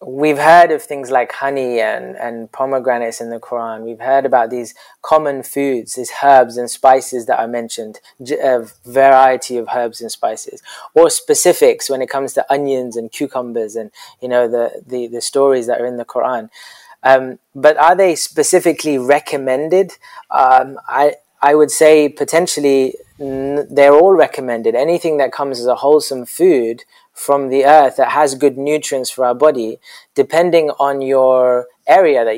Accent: British